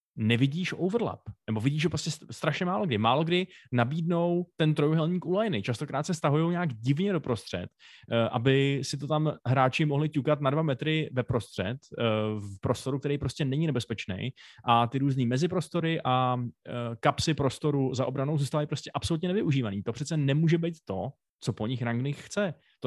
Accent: native